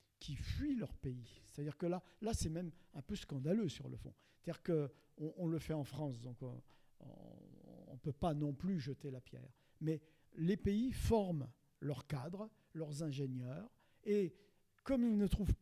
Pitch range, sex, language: 145-205 Hz, male, French